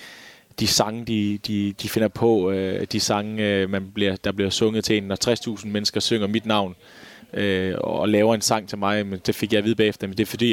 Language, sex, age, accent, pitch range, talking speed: Danish, male, 20-39, native, 105-115 Hz, 210 wpm